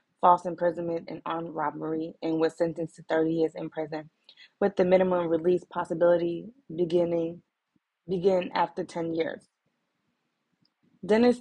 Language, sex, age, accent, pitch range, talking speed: English, female, 20-39, American, 170-190 Hz, 120 wpm